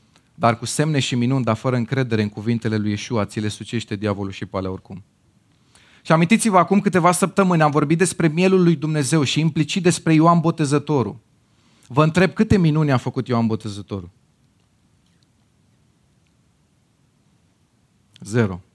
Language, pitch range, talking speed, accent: Romanian, 105-155 Hz, 140 wpm, native